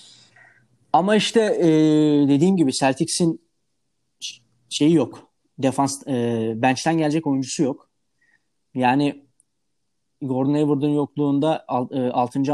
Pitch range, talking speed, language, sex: 130-155 Hz, 100 wpm, Turkish, male